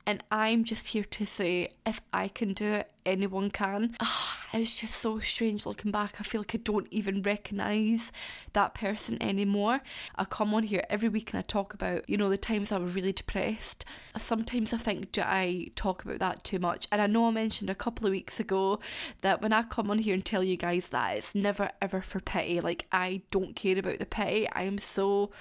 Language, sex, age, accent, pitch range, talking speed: English, female, 20-39, British, 190-225 Hz, 220 wpm